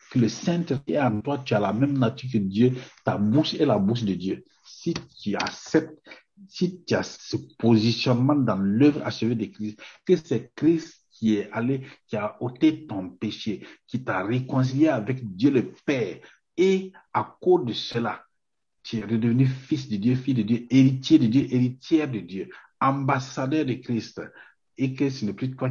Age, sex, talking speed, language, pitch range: 60-79, male, 185 wpm, French, 105-135 Hz